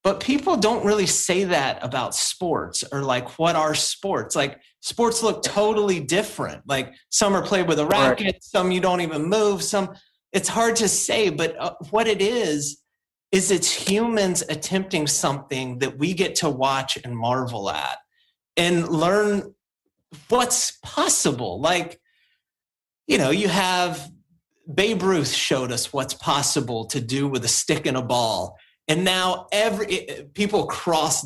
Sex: male